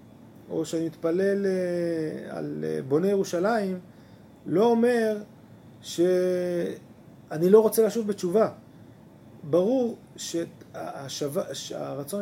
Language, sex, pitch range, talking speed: Hebrew, male, 155-215 Hz, 75 wpm